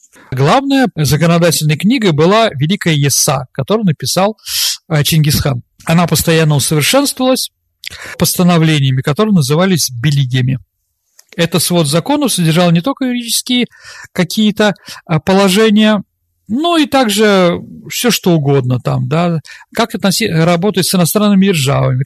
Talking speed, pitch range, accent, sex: 105 wpm, 145-210 Hz, native, male